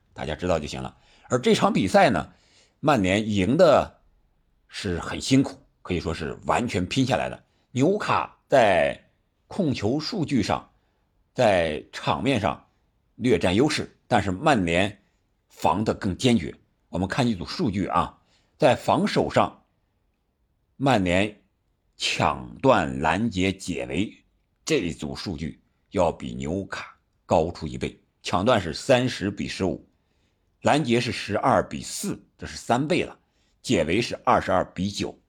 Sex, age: male, 50-69